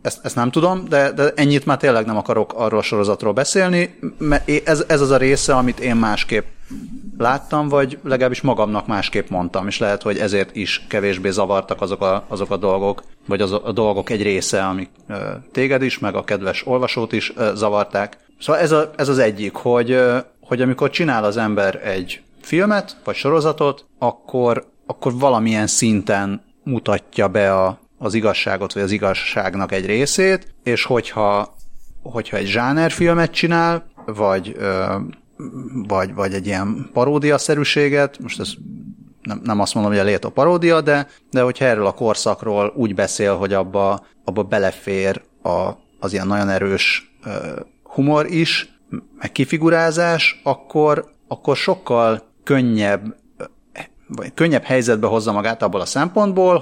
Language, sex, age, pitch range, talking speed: Hungarian, male, 30-49, 100-145 Hz, 150 wpm